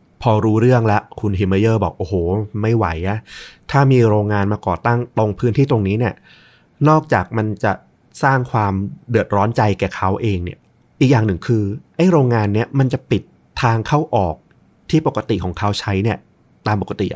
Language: Thai